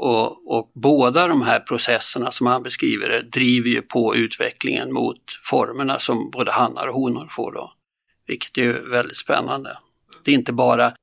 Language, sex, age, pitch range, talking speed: Swedish, male, 50-69, 120-150 Hz, 175 wpm